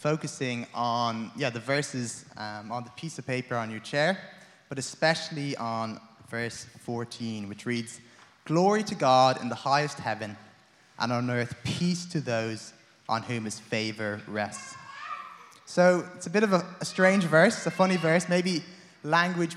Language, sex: English, male